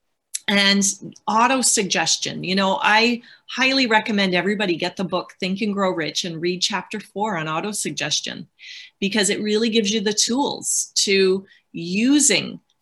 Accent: American